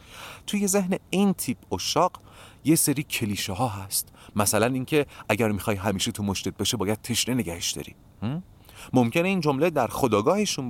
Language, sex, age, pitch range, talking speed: Persian, male, 40-59, 95-135 Hz, 150 wpm